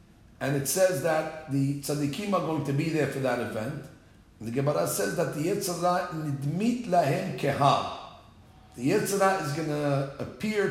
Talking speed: 160 wpm